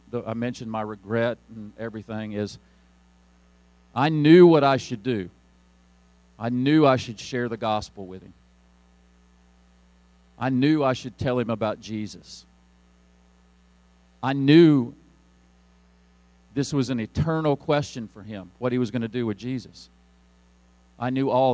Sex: male